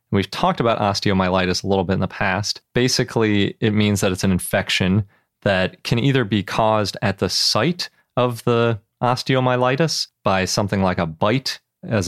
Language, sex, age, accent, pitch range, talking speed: English, male, 30-49, American, 95-115 Hz, 170 wpm